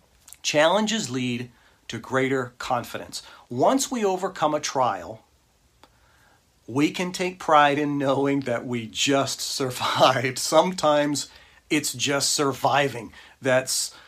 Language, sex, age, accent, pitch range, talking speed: English, male, 40-59, American, 125-155 Hz, 100 wpm